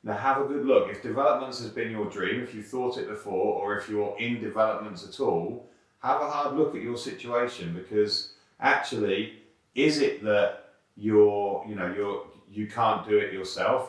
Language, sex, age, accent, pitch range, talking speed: English, male, 40-59, British, 95-110 Hz, 190 wpm